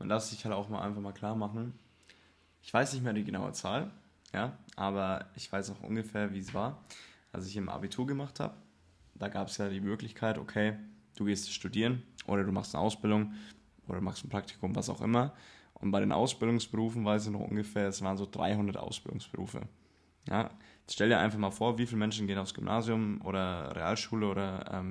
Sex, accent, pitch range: male, German, 95-110 Hz